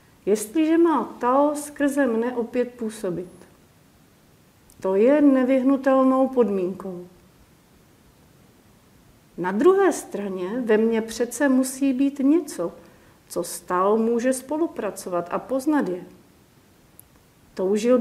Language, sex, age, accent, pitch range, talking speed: Czech, female, 50-69, native, 195-265 Hz, 95 wpm